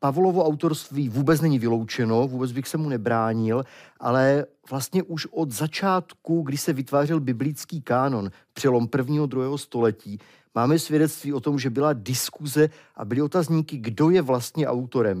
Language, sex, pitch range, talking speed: Czech, male, 115-160 Hz, 155 wpm